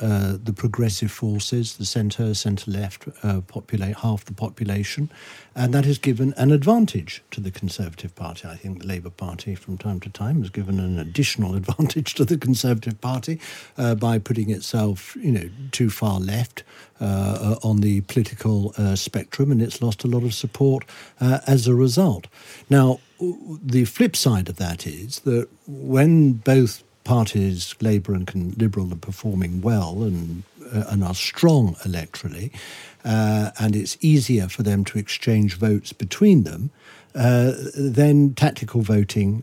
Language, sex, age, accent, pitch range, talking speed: English, male, 60-79, British, 100-125 Hz, 155 wpm